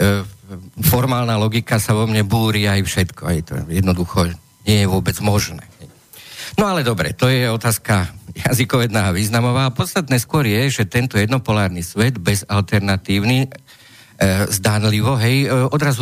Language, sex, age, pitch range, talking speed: Slovak, male, 50-69, 95-115 Hz, 135 wpm